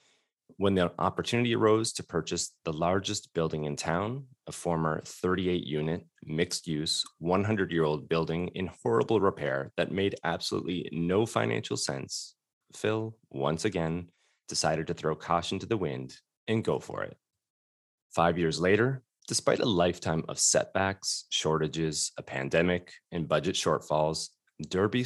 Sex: male